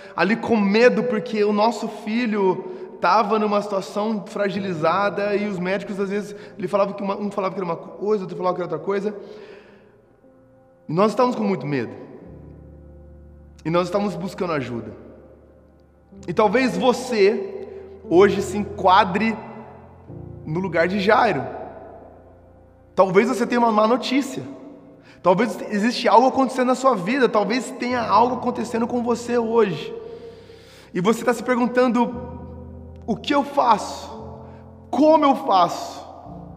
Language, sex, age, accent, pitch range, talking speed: Portuguese, male, 20-39, Brazilian, 195-250 Hz, 135 wpm